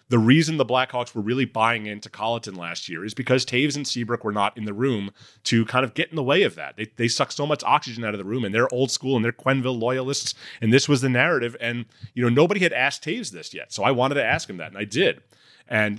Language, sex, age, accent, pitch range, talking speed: English, male, 30-49, American, 105-135 Hz, 275 wpm